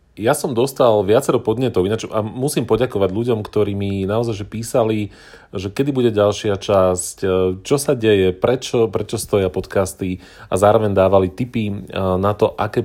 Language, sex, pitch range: Slovak, male, 95-115 Hz